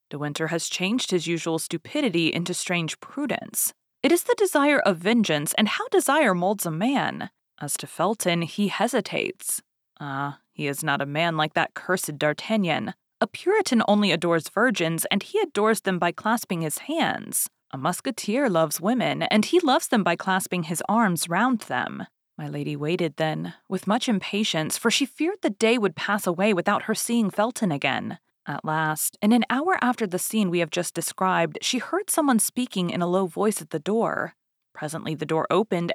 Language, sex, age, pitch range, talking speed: English, female, 30-49, 160-225 Hz, 185 wpm